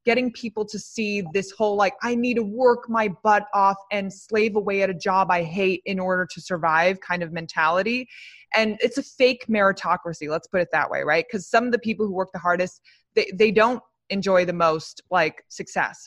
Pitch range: 175-225 Hz